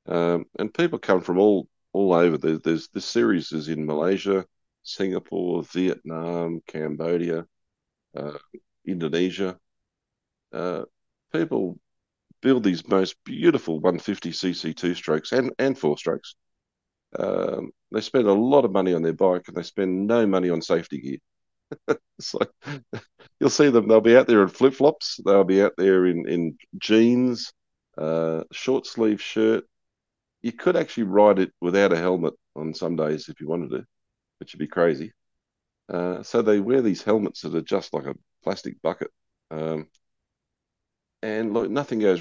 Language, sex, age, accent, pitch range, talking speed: English, male, 50-69, Australian, 85-105 Hz, 160 wpm